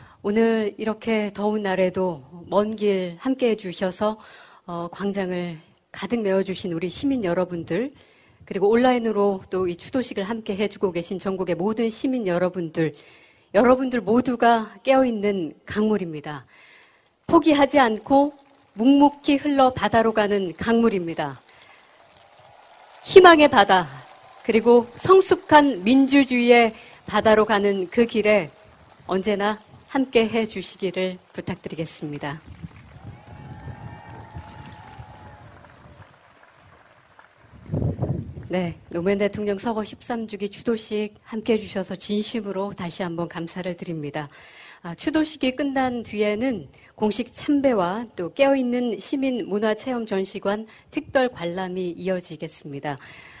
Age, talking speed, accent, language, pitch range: 40-59, 85 wpm, Korean, English, 180-240 Hz